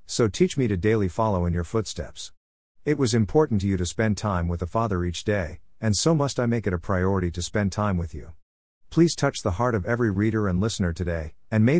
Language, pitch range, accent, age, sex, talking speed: English, 90-115 Hz, American, 50-69, male, 240 wpm